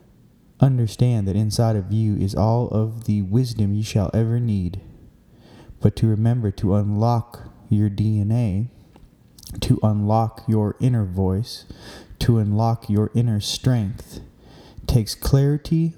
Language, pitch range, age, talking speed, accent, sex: English, 105-125 Hz, 20-39, 125 wpm, American, male